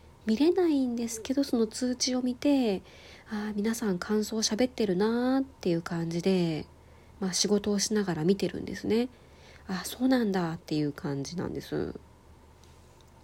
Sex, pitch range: female, 175-225 Hz